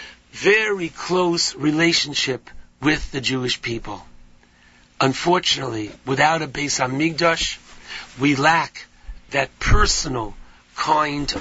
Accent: American